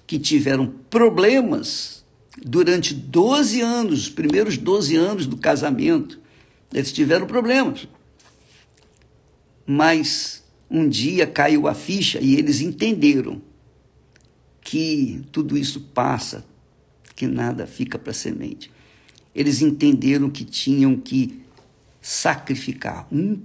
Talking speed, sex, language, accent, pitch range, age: 100 wpm, male, Portuguese, Brazilian, 135-195 Hz, 60-79